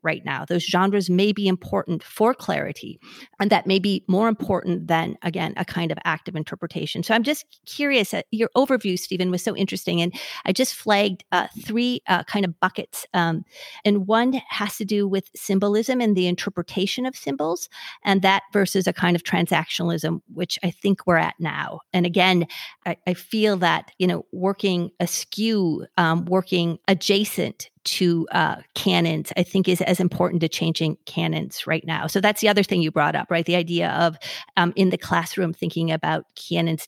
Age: 40-59